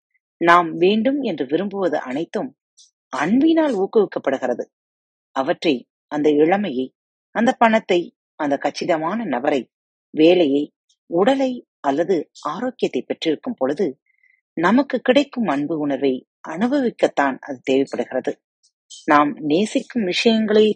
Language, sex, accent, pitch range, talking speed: Tamil, female, native, 155-245 Hz, 80 wpm